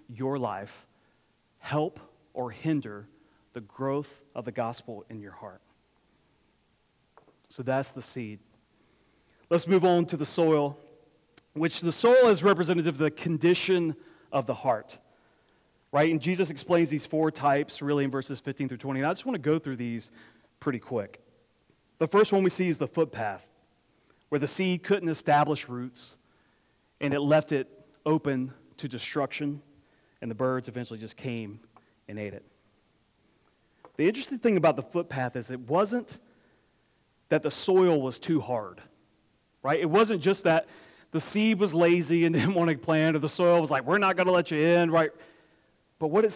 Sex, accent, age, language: male, American, 30-49, English